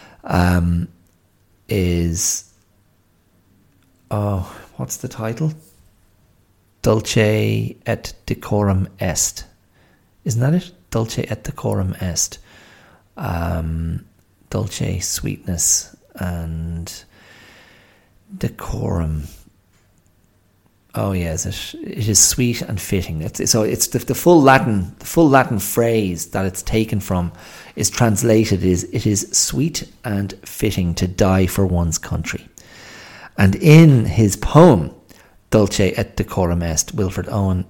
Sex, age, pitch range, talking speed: male, 40-59, 90-105 Hz, 105 wpm